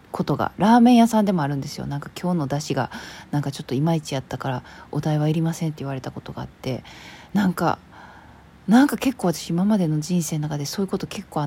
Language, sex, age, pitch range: Japanese, female, 20-39, 150-190 Hz